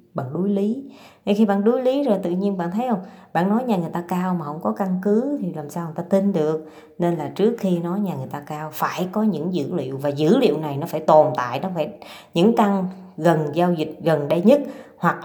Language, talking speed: Vietnamese, 255 wpm